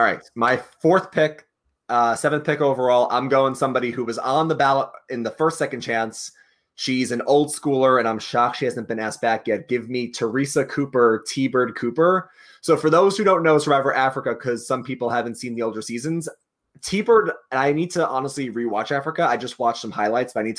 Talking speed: 210 wpm